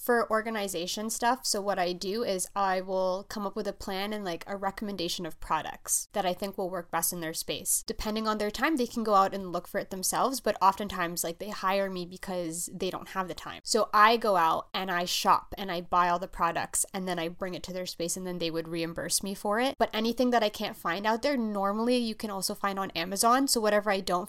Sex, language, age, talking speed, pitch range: female, English, 20-39, 255 wpm, 185-220 Hz